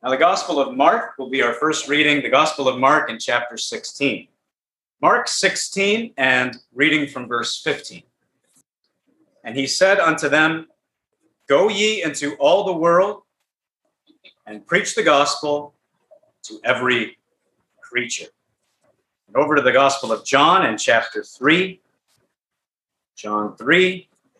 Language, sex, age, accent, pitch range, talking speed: English, male, 40-59, American, 130-185 Hz, 130 wpm